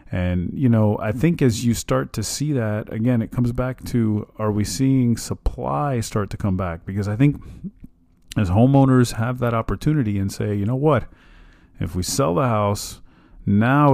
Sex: male